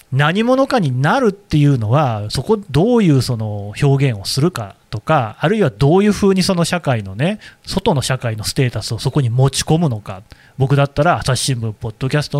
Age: 30-49